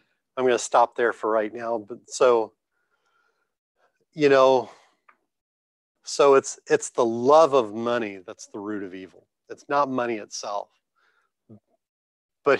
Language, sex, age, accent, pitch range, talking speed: English, male, 40-59, American, 110-150 Hz, 140 wpm